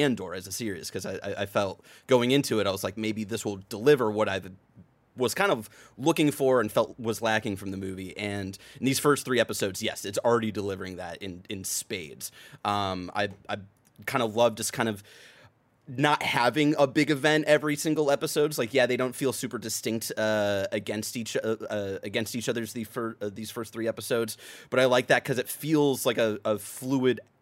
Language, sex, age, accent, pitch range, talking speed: English, male, 30-49, American, 100-125 Hz, 210 wpm